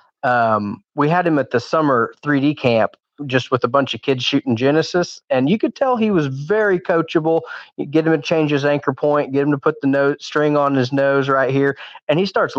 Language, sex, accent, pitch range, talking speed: English, male, American, 125-155 Hz, 230 wpm